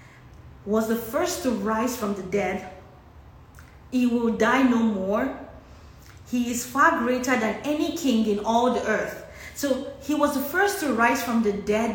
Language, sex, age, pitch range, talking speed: English, female, 20-39, 210-285 Hz, 170 wpm